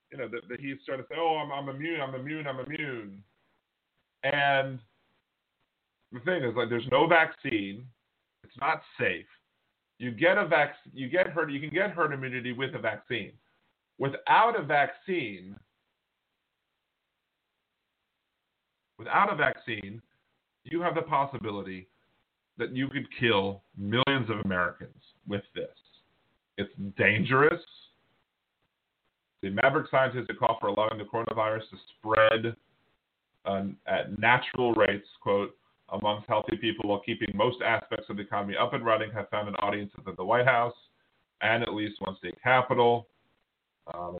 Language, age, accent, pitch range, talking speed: English, 40-59, American, 100-125 Hz, 145 wpm